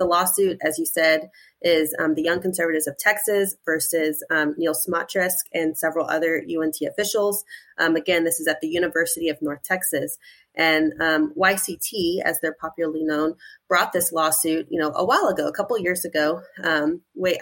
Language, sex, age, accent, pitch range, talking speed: English, female, 30-49, American, 160-185 Hz, 170 wpm